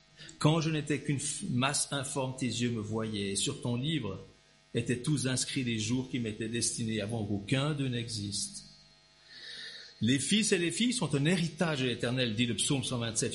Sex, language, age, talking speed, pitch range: male, French, 50-69, 170 wpm, 120-155 Hz